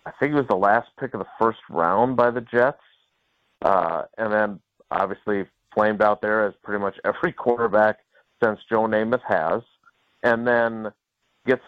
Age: 40-59